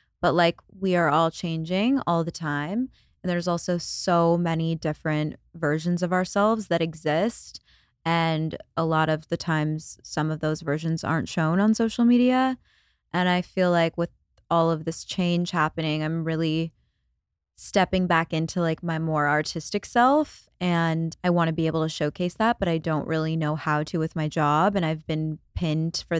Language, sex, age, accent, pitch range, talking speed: English, female, 20-39, American, 160-190 Hz, 180 wpm